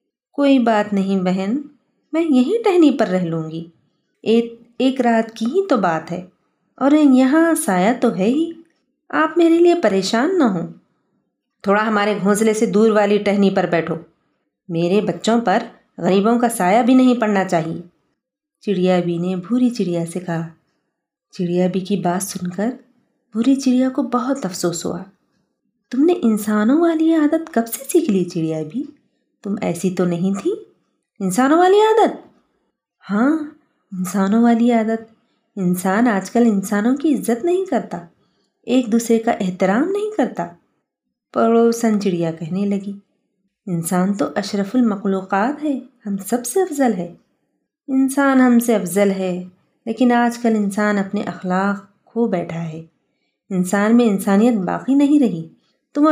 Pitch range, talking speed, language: 190-260 Hz, 150 wpm, Urdu